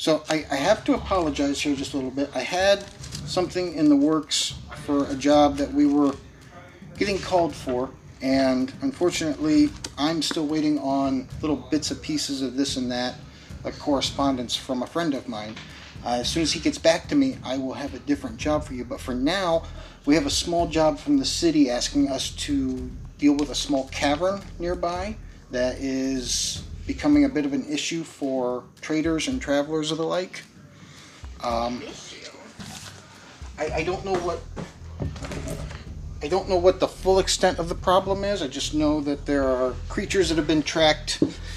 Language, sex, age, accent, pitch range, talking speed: English, male, 40-59, American, 130-165 Hz, 185 wpm